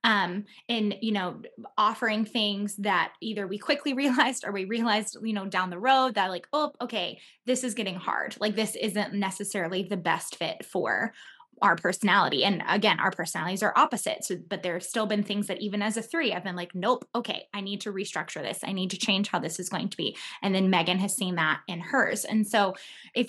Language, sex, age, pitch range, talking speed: English, female, 20-39, 185-220 Hz, 220 wpm